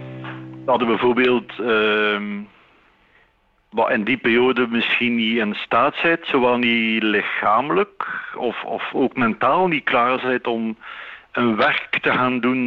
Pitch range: 100-125 Hz